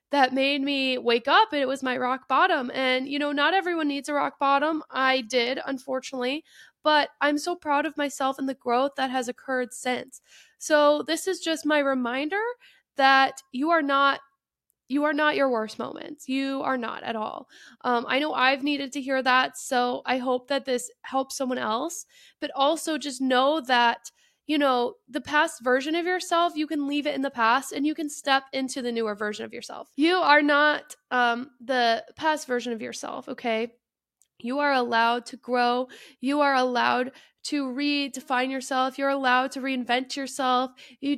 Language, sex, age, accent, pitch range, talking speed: English, female, 20-39, American, 250-290 Hz, 190 wpm